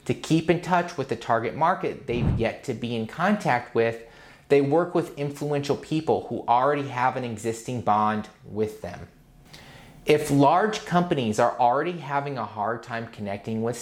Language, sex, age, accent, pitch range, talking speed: English, male, 30-49, American, 115-150 Hz, 170 wpm